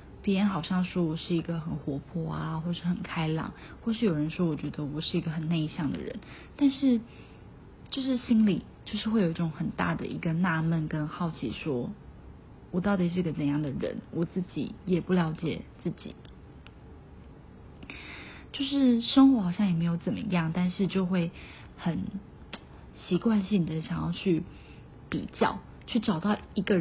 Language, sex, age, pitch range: Chinese, female, 20-39, 160-195 Hz